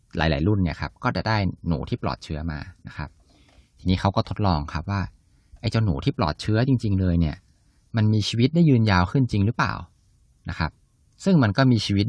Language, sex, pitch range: Thai, male, 85-115 Hz